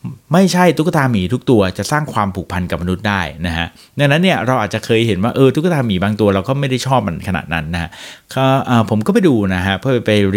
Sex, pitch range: male, 95-135 Hz